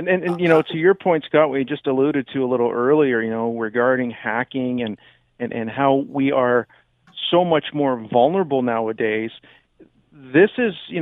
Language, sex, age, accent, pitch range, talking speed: English, male, 50-69, American, 130-170 Hz, 185 wpm